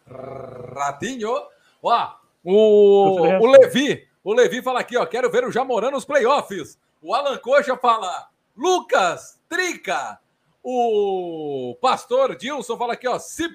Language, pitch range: Portuguese, 180-290 Hz